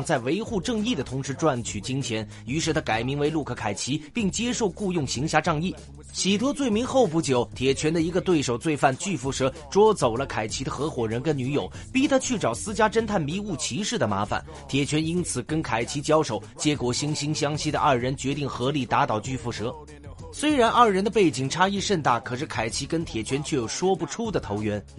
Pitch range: 125-185 Hz